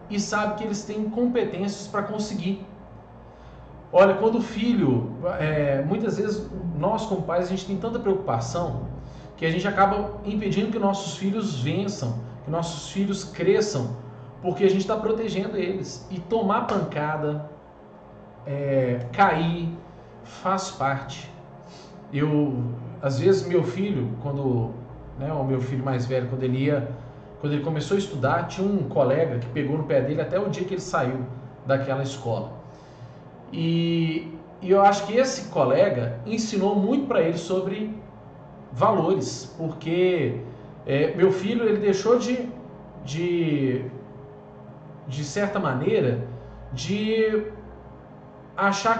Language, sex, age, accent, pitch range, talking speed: Portuguese, male, 40-59, Brazilian, 140-205 Hz, 135 wpm